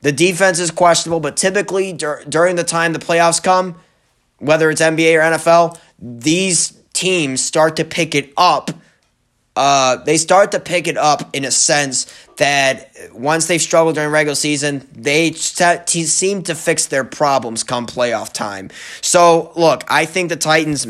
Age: 20-39